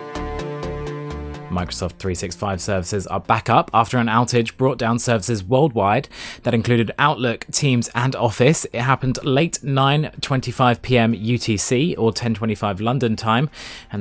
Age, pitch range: 20-39, 100-130 Hz